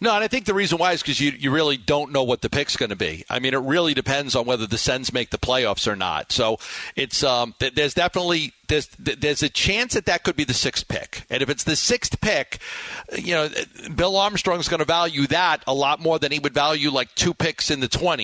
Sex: male